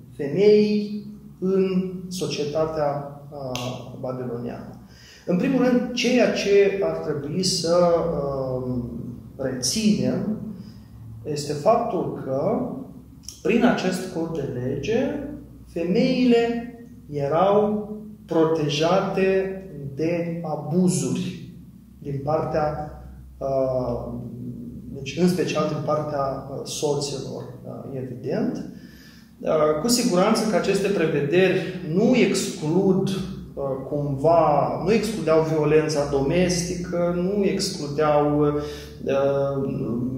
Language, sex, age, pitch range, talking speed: Romanian, male, 30-49, 135-190 Hz, 80 wpm